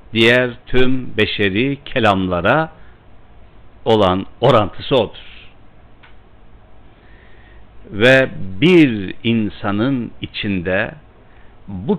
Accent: native